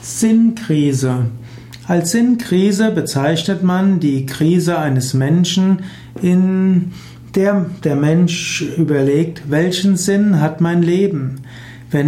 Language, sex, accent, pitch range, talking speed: German, male, German, 140-175 Hz, 100 wpm